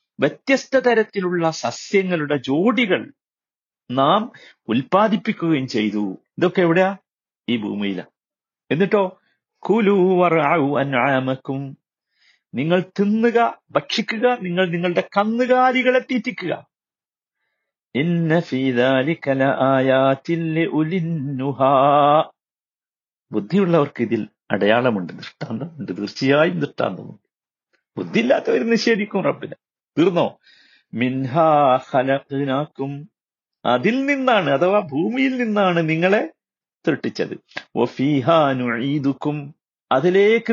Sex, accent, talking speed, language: male, native, 60 wpm, Malayalam